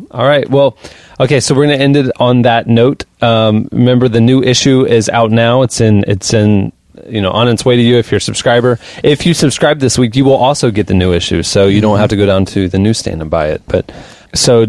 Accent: American